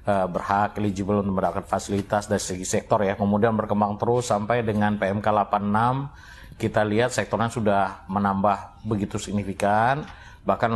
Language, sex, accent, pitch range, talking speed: Indonesian, male, native, 100-115 Hz, 135 wpm